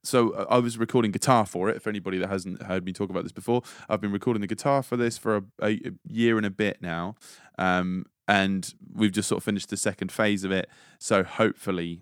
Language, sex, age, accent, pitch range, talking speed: English, male, 20-39, British, 95-110 Hz, 230 wpm